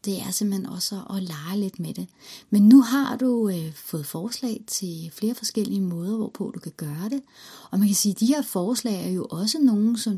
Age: 30-49